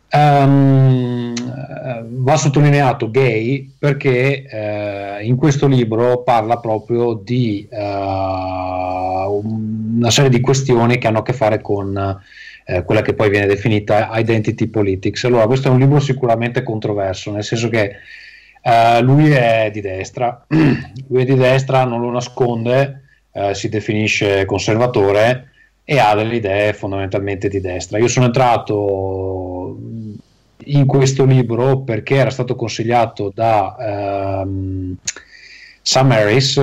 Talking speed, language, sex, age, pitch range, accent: 130 wpm, Italian, male, 30-49, 100-130 Hz, native